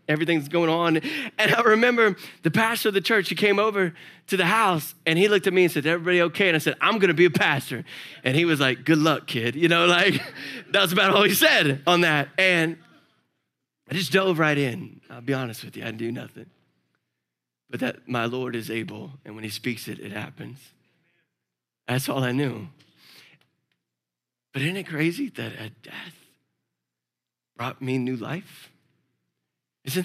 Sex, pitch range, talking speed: male, 130-205 Hz, 190 wpm